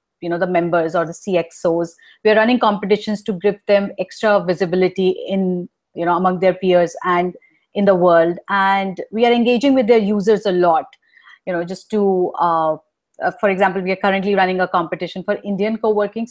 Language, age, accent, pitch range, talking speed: English, 30-49, Indian, 180-210 Hz, 185 wpm